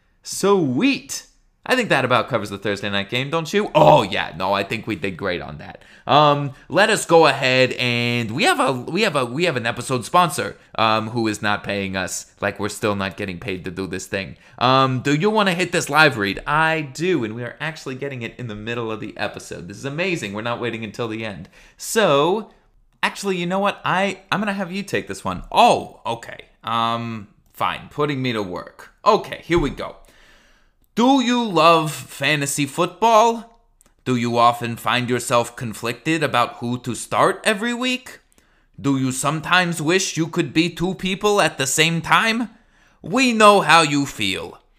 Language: English